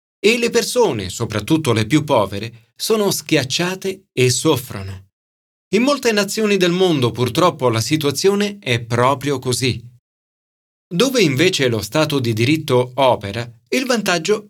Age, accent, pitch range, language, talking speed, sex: 40-59, native, 110-160 Hz, Italian, 130 wpm, male